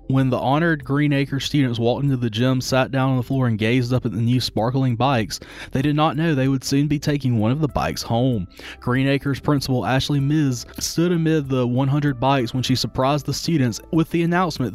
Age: 20-39